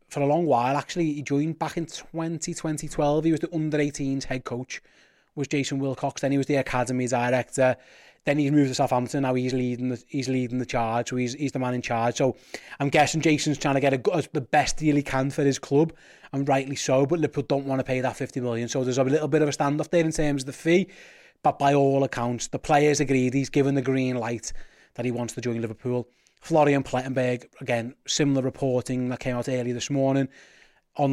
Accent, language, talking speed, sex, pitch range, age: British, English, 230 wpm, male, 125-155 Hz, 20-39